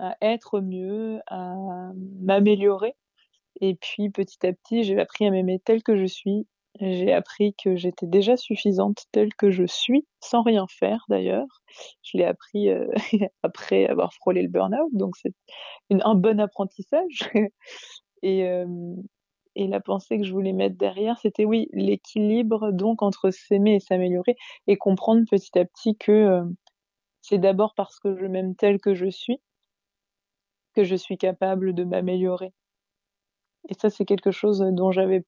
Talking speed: 160 wpm